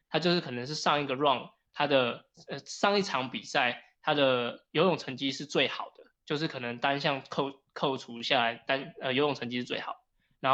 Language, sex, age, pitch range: Chinese, male, 20-39, 130-160 Hz